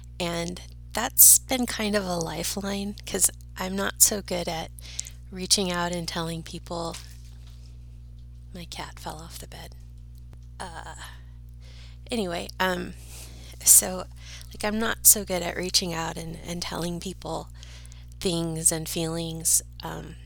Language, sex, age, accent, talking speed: English, female, 30-49, American, 130 wpm